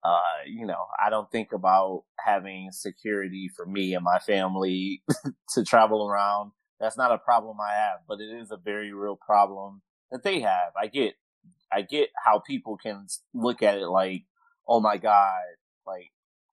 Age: 30-49